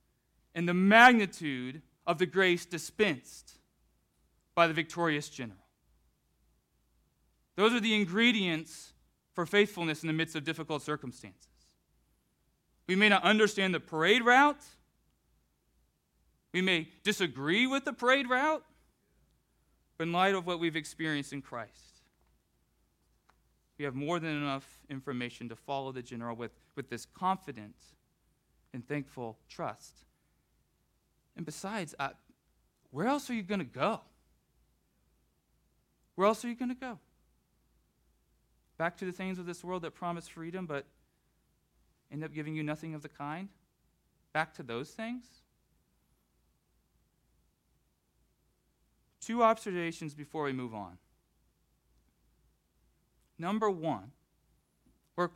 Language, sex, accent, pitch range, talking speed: English, male, American, 130-190 Hz, 120 wpm